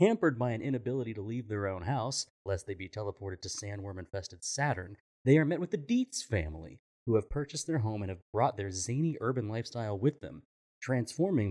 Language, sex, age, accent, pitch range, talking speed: English, male, 30-49, American, 100-140 Hz, 200 wpm